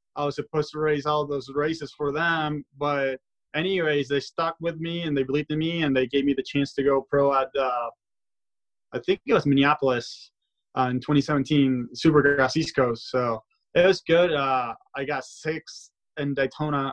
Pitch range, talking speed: 125-145 Hz, 190 wpm